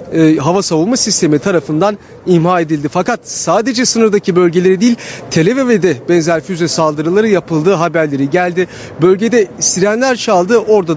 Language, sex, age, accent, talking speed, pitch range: Turkish, male, 40-59, native, 120 wpm, 170-210 Hz